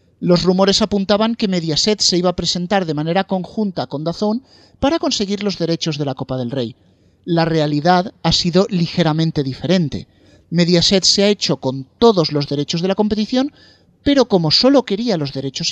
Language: Spanish